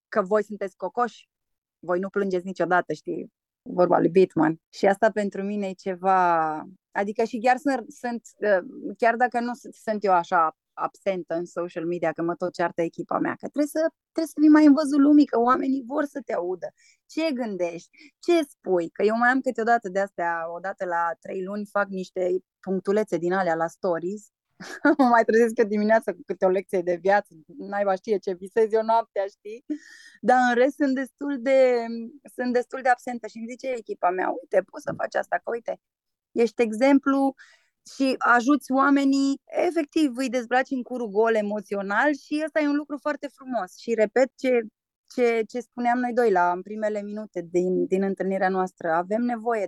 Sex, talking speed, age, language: female, 180 wpm, 20-39, Romanian